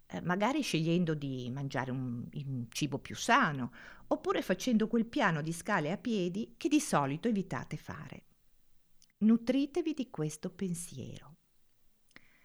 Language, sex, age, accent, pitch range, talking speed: Italian, female, 50-69, native, 140-215 Hz, 125 wpm